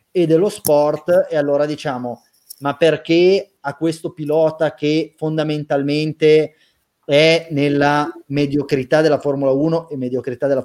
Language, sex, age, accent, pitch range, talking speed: Italian, male, 30-49, native, 135-155 Hz, 125 wpm